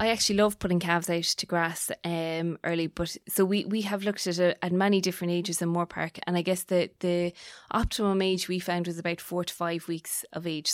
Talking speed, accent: 235 wpm, Irish